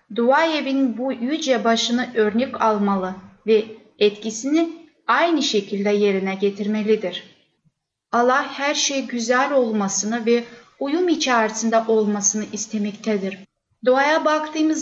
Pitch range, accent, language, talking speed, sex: 210-270 Hz, native, Turkish, 100 wpm, female